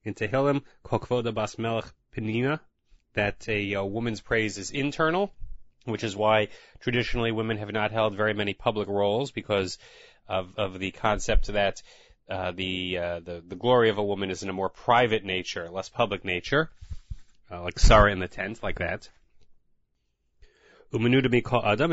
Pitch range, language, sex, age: 100-130 Hz, English, male, 30-49